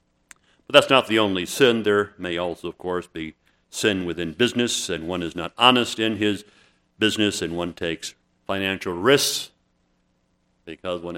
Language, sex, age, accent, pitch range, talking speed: English, male, 50-69, American, 85-105 Hz, 160 wpm